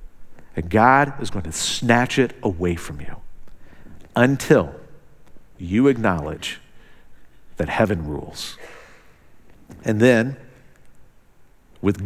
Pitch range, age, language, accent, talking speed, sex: 95-155 Hz, 50-69, English, American, 95 wpm, male